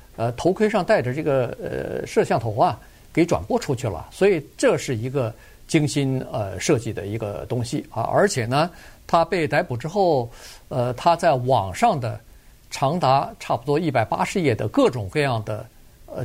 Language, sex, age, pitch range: Chinese, male, 50-69, 120-145 Hz